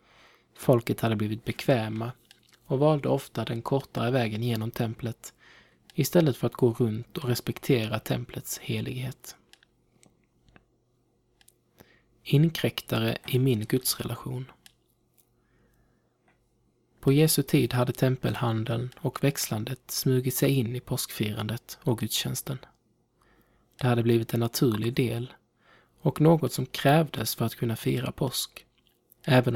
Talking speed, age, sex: 110 wpm, 20-39, male